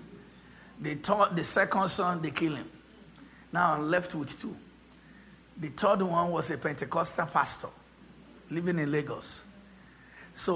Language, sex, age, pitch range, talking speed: English, male, 50-69, 165-240 Hz, 130 wpm